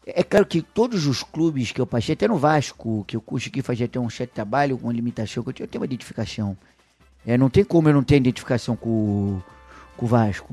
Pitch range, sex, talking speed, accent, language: 110-140 Hz, male, 215 wpm, Brazilian, Portuguese